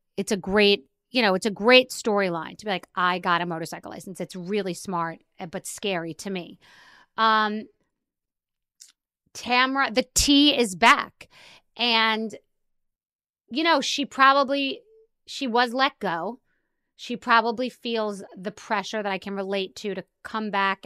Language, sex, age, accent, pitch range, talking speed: English, female, 30-49, American, 190-230 Hz, 150 wpm